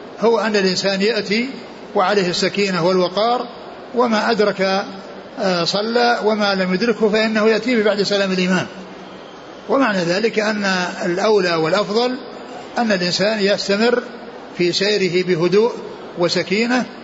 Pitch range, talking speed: 185-220 Hz, 105 wpm